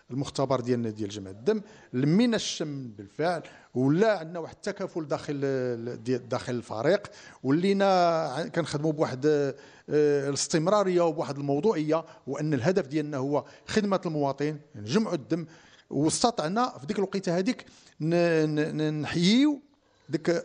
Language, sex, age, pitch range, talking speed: English, male, 50-69, 130-175 Hz, 110 wpm